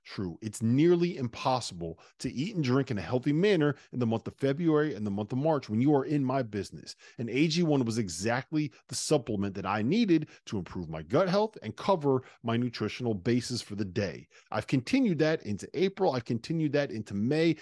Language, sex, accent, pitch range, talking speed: English, male, American, 115-165 Hz, 205 wpm